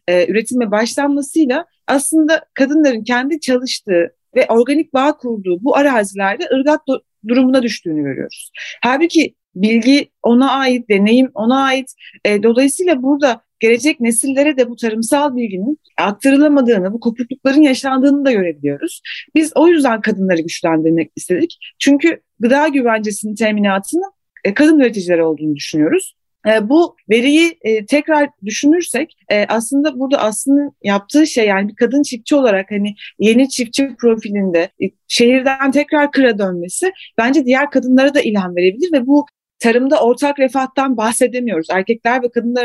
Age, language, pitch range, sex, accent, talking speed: 40-59, Turkish, 220-285 Hz, female, native, 125 wpm